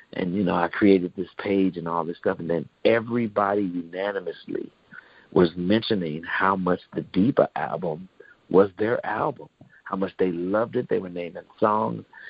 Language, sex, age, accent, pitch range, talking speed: English, male, 50-69, American, 95-115 Hz, 165 wpm